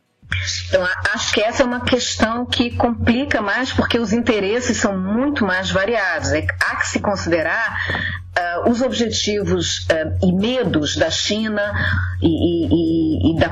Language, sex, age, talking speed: Portuguese, female, 40-59, 145 wpm